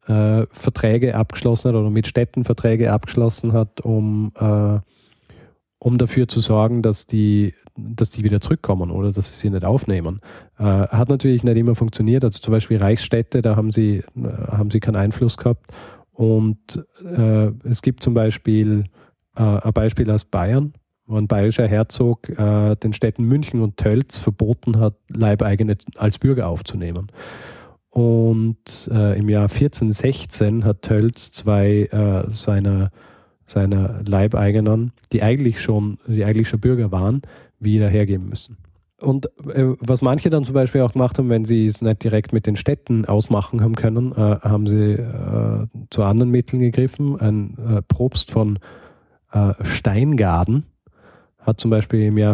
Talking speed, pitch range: 155 wpm, 105-120 Hz